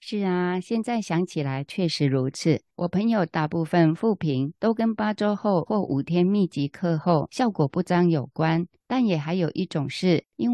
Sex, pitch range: female, 155-195 Hz